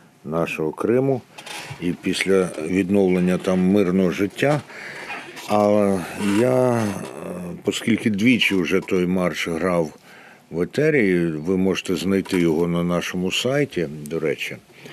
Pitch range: 85-100 Hz